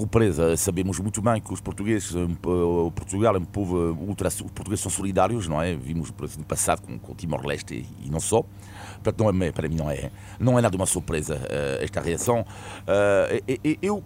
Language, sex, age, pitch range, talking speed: Portuguese, male, 50-69, 95-120 Hz, 180 wpm